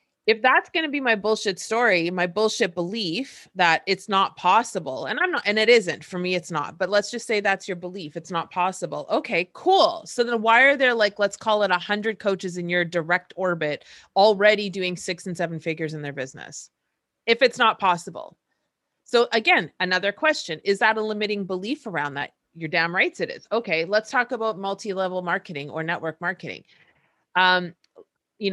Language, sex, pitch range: English, female, 175-225 Hz